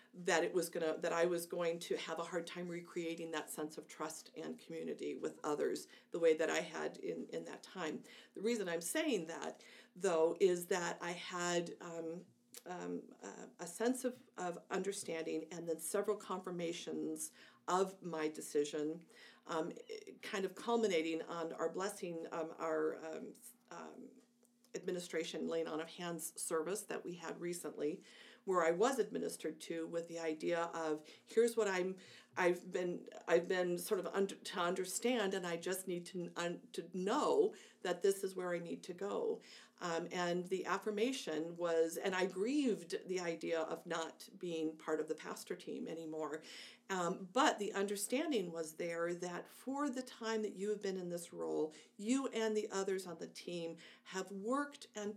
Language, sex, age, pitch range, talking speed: English, female, 50-69, 165-210 Hz, 175 wpm